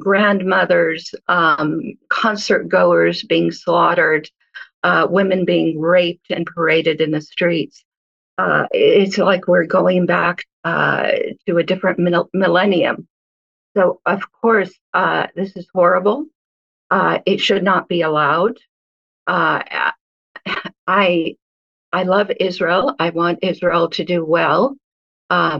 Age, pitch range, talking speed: 50-69, 160-195 Hz, 120 wpm